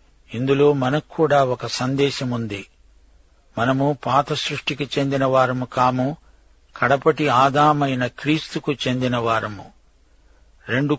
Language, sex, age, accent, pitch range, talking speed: Telugu, male, 50-69, native, 115-145 Hz, 80 wpm